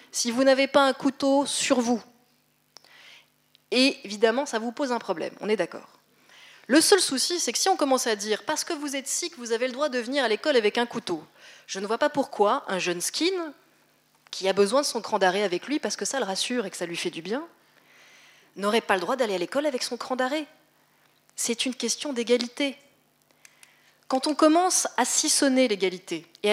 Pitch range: 210-285 Hz